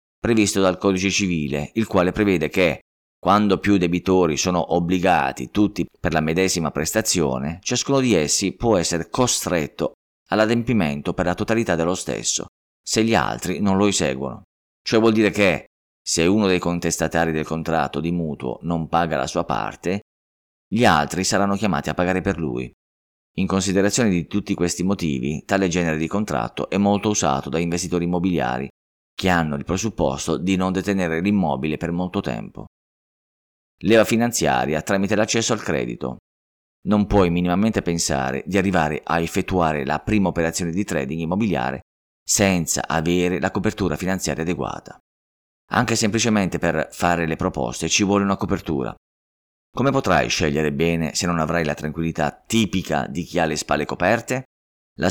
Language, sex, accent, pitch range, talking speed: Italian, male, native, 75-100 Hz, 155 wpm